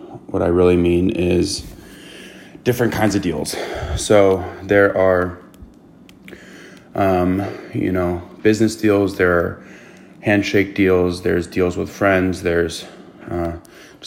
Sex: male